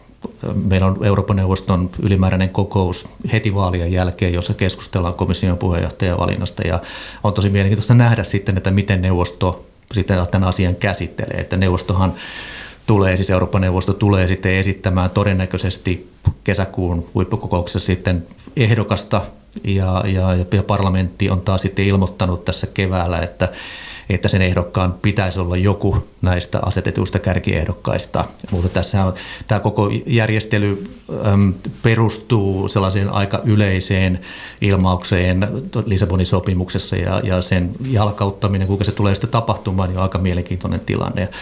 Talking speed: 125 wpm